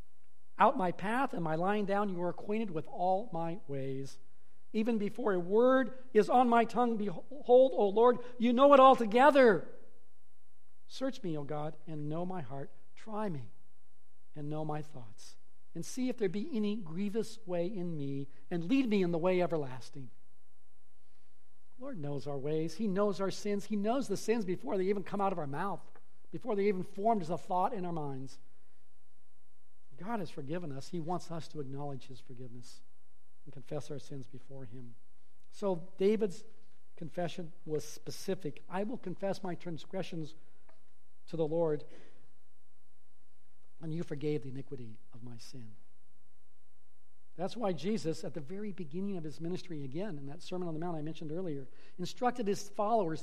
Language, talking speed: English, 170 wpm